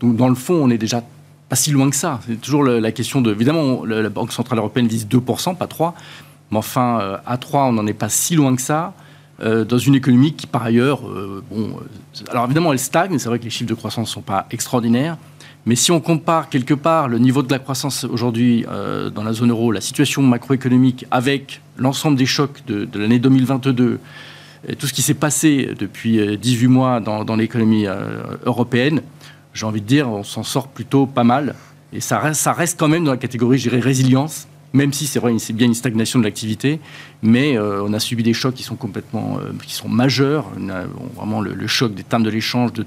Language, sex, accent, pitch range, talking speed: French, male, French, 115-140 Hz, 225 wpm